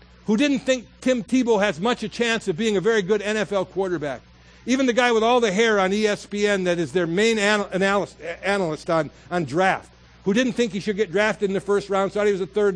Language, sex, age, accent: English, male, 60-79, American